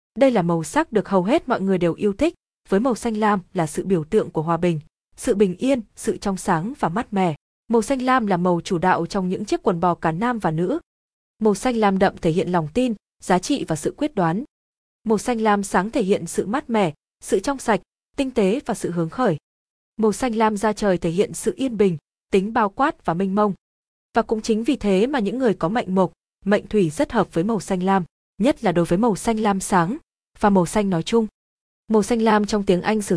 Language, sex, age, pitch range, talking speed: Vietnamese, female, 20-39, 185-230 Hz, 245 wpm